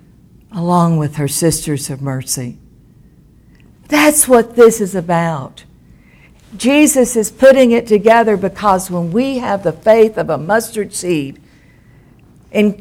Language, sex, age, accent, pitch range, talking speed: English, female, 60-79, American, 165-225 Hz, 125 wpm